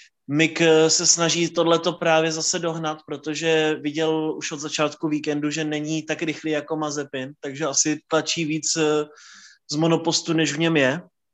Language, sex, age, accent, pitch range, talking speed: Czech, male, 20-39, native, 140-160 Hz, 155 wpm